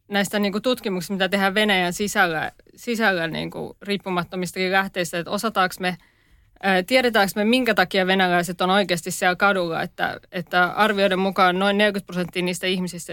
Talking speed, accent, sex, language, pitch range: 160 wpm, native, female, Finnish, 180-200 Hz